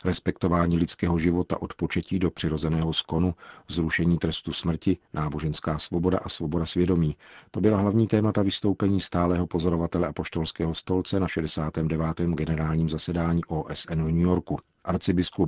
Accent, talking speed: native, 130 wpm